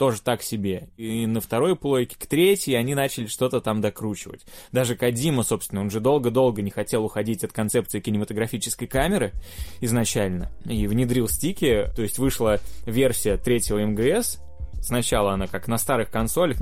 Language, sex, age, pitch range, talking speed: Russian, male, 20-39, 105-130 Hz, 155 wpm